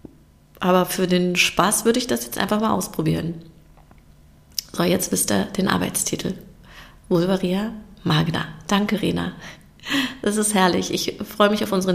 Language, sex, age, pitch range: German, female, 30-49, 170-200 Hz